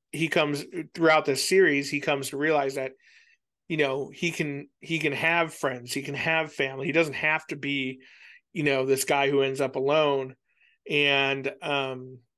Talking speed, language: 180 wpm, English